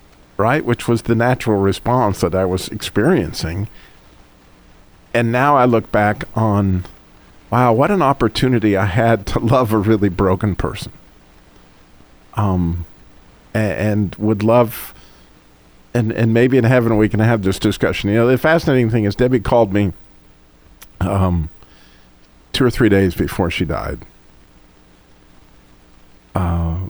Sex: male